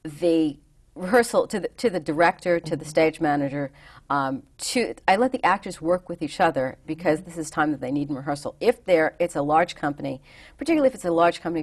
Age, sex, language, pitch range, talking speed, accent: 40-59, female, English, 145-180 Hz, 215 wpm, American